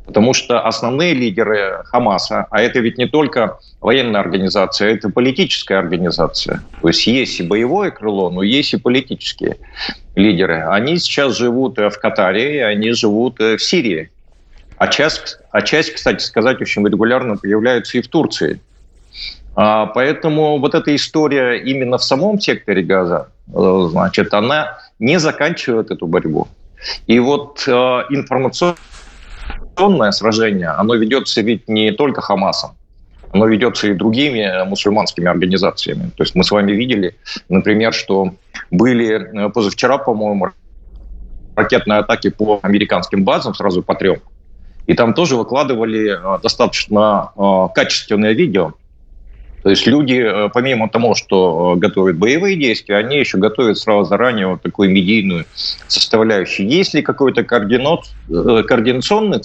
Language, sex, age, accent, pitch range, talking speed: Russian, male, 40-59, native, 95-125 Hz, 125 wpm